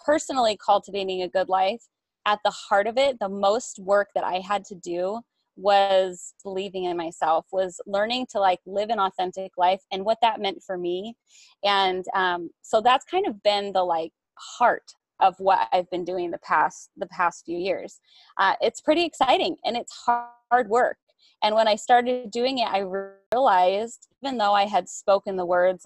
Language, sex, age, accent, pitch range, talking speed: English, female, 20-39, American, 185-240 Hz, 185 wpm